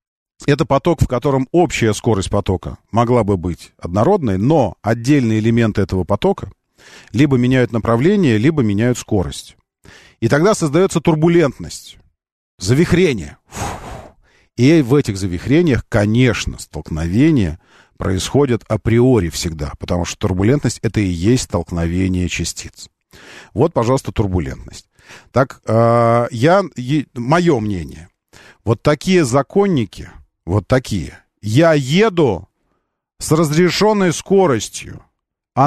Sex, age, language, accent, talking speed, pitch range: male, 40-59, Russian, native, 110 wpm, 100-145 Hz